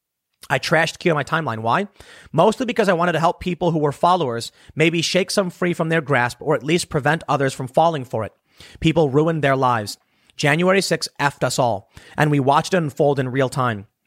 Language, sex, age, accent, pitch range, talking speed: English, male, 30-49, American, 125-165 Hz, 215 wpm